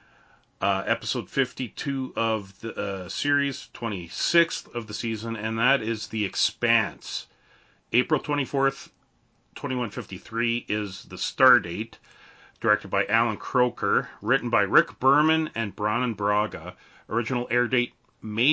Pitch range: 110-140 Hz